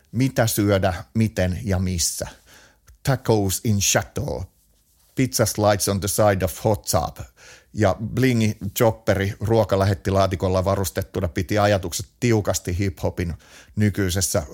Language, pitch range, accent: Finnish, 90-110 Hz, native